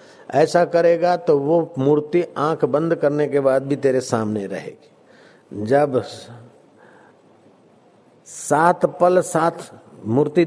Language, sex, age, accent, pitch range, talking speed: Hindi, male, 50-69, native, 140-180 Hz, 110 wpm